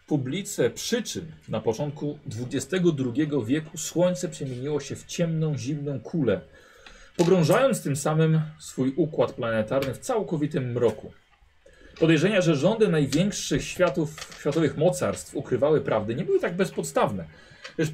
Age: 40-59